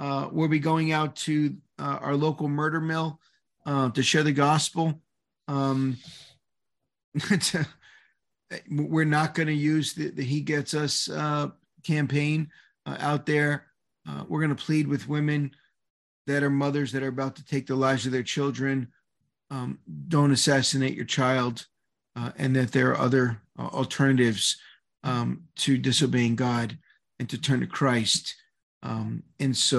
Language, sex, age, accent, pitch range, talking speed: English, male, 40-59, American, 125-150 Hz, 155 wpm